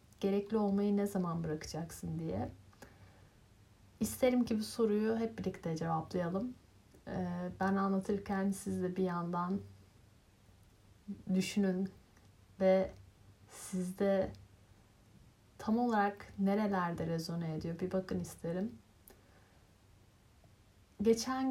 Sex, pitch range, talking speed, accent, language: female, 155-210 Hz, 85 wpm, native, Turkish